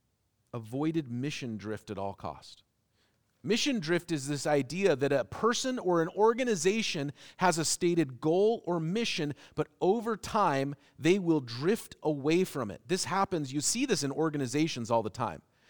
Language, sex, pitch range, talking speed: English, male, 130-185 Hz, 160 wpm